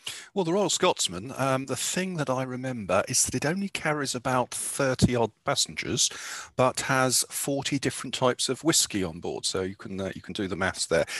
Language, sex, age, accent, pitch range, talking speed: English, male, 40-59, British, 95-130 Hz, 205 wpm